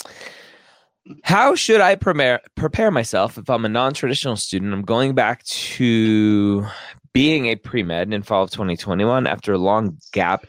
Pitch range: 95-125 Hz